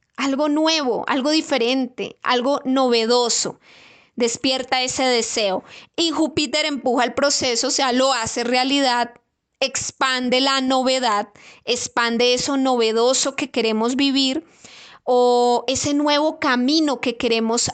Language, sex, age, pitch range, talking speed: Spanish, female, 20-39, 235-285 Hz, 115 wpm